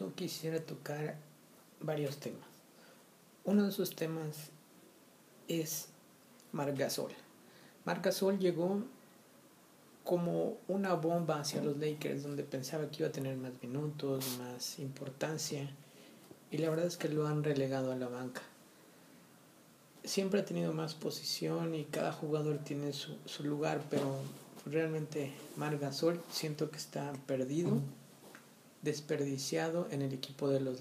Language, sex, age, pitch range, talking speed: Spanish, male, 50-69, 145-175 Hz, 125 wpm